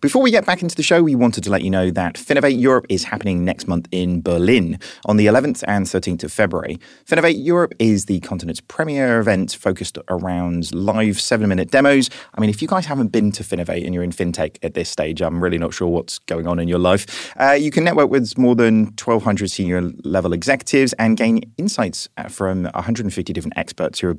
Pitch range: 90-135 Hz